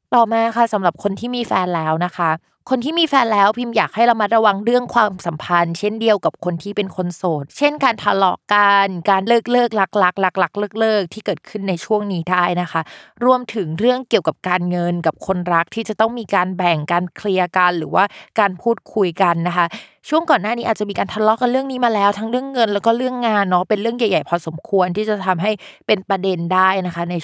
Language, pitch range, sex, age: Thai, 175-225 Hz, female, 20-39